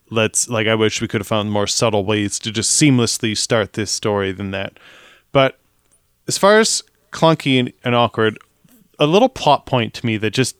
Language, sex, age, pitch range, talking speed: English, male, 20-39, 115-160 Hz, 200 wpm